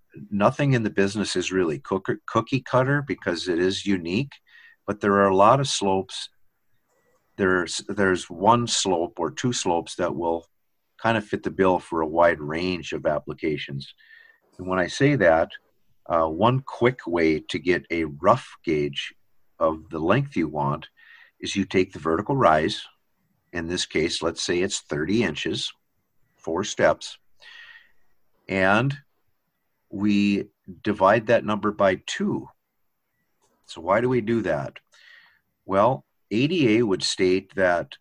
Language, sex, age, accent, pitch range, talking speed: English, male, 50-69, American, 85-115 Hz, 145 wpm